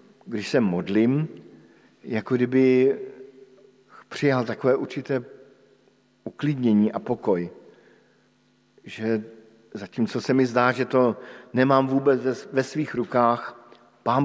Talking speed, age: 100 wpm, 50-69